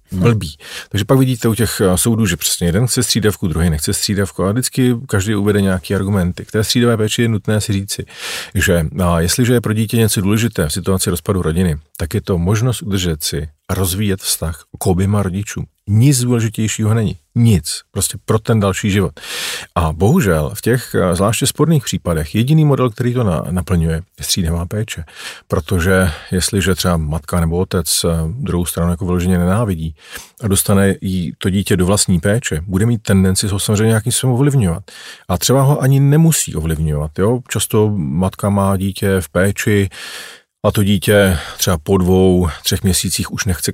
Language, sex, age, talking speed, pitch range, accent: Czech, male, 40-59, 175 wpm, 90-110 Hz, native